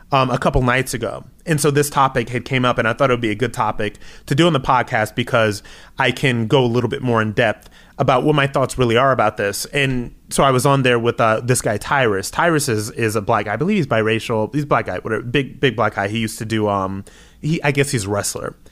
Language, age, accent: English, 30-49, American